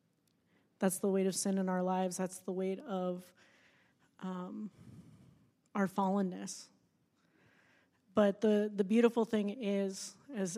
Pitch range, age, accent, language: 185-200 Hz, 30-49, American, English